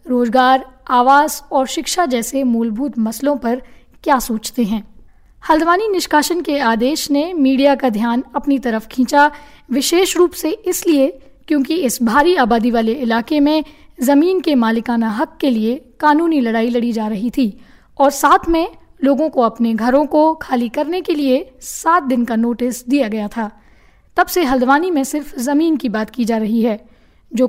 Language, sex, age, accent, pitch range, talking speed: Hindi, female, 20-39, native, 240-300 Hz, 170 wpm